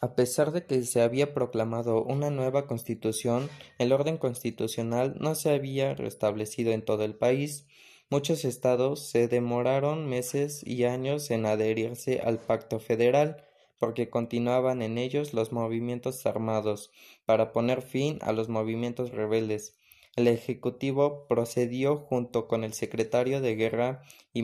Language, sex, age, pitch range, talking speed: Spanish, male, 20-39, 115-135 Hz, 140 wpm